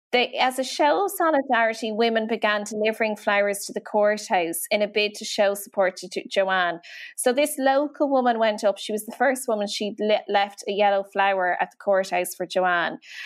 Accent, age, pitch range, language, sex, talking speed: Irish, 20-39, 200-250 Hz, English, female, 185 wpm